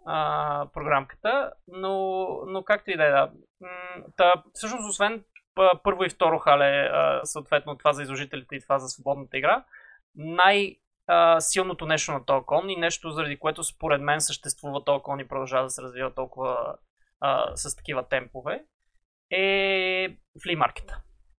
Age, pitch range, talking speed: 20-39, 145-190 Hz, 130 wpm